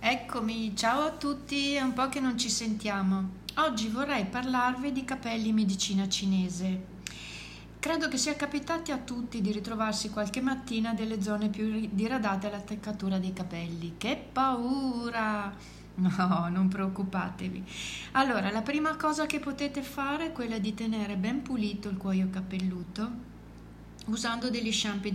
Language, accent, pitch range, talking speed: Italian, native, 195-240 Hz, 145 wpm